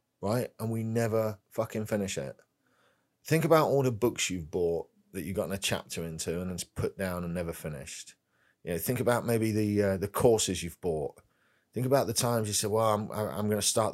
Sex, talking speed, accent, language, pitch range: male, 215 wpm, British, English, 95-130 Hz